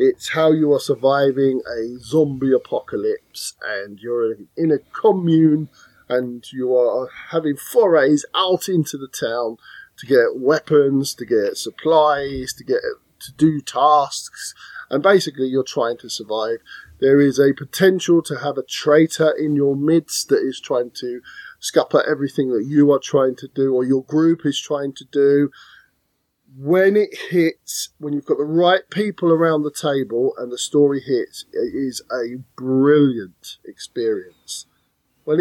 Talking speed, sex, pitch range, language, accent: 155 wpm, male, 135-190 Hz, English, British